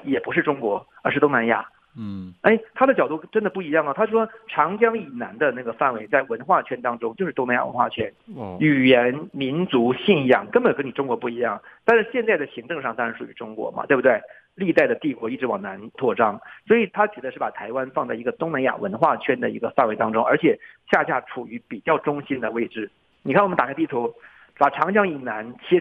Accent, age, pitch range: native, 50-69, 130-220 Hz